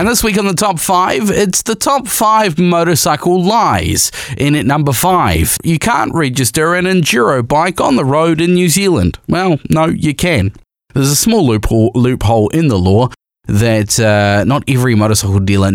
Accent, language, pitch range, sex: Australian, English, 100-150 Hz, male